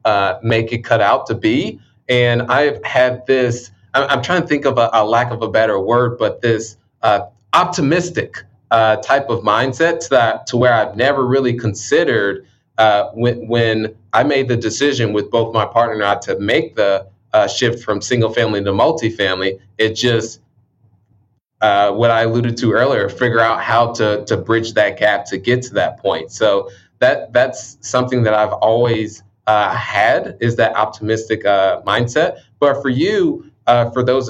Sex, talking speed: male, 180 wpm